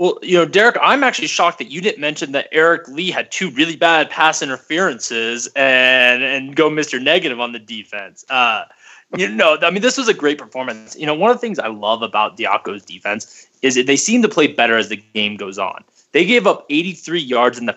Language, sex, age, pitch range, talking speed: English, male, 20-39, 125-160 Hz, 230 wpm